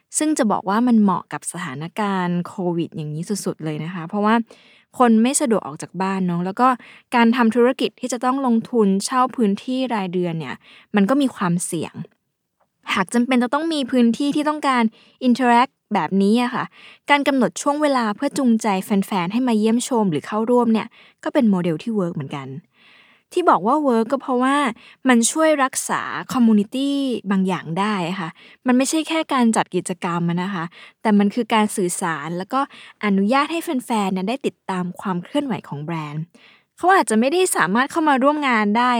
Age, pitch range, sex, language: 20-39, 185-255 Hz, female, Thai